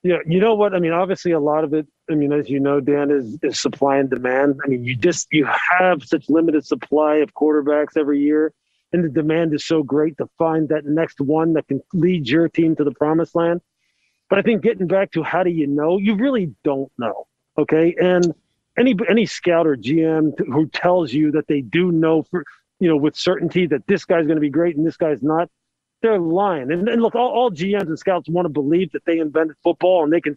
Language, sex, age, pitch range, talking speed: English, male, 40-59, 150-180 Hz, 235 wpm